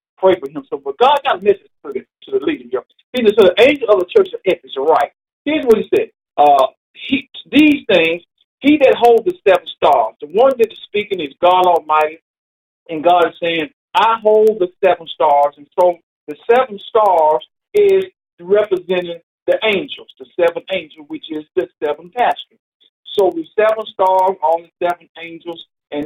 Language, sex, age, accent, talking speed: English, male, 50-69, American, 180 wpm